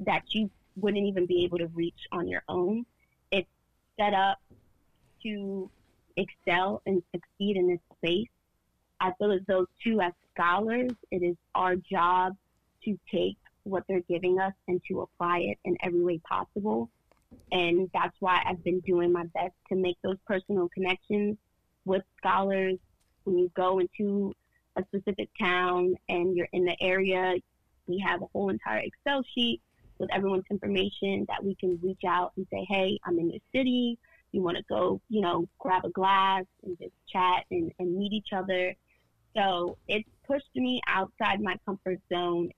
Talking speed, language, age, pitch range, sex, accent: 170 wpm, English, 20-39, 180-200 Hz, female, American